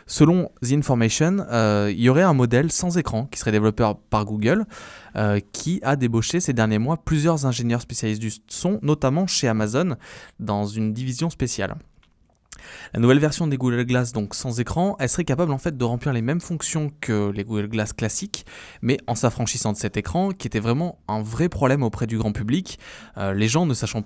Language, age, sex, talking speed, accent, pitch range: French, 20-39, male, 195 wpm, French, 110-145 Hz